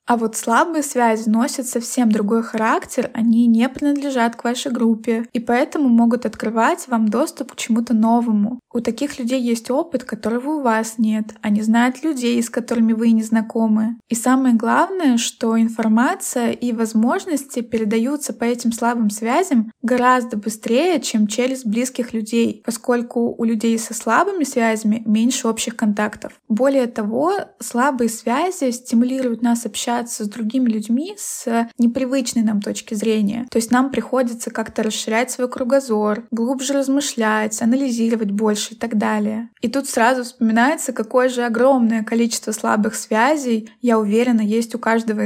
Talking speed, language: 150 wpm, Russian